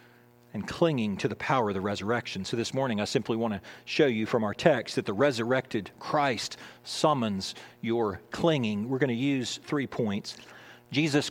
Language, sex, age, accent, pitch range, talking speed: English, male, 40-59, American, 120-145 Hz, 180 wpm